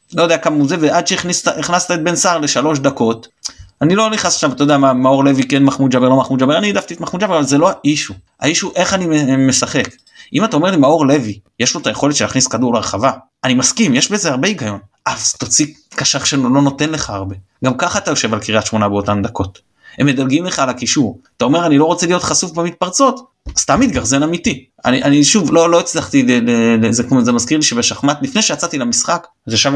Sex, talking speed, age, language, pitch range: male, 220 wpm, 30-49, Hebrew, 120-180 Hz